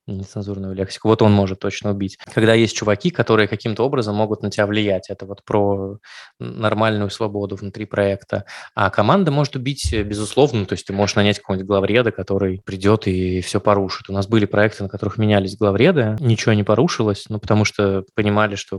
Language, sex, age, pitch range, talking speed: Russian, male, 20-39, 100-110 Hz, 180 wpm